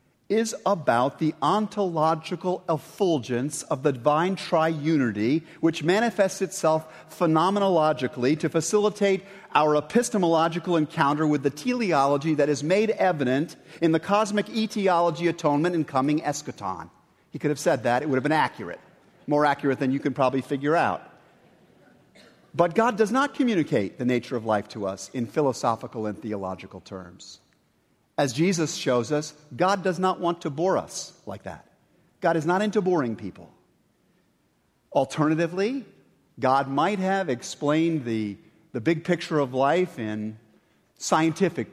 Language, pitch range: English, 135-180 Hz